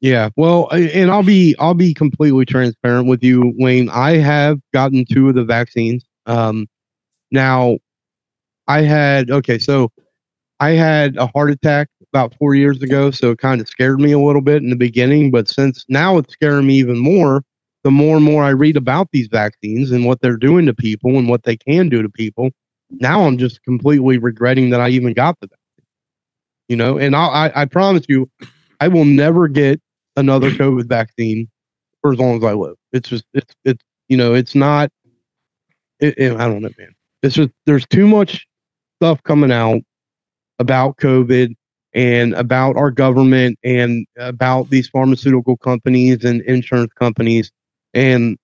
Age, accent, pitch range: 30-49, American, 125-150 Hz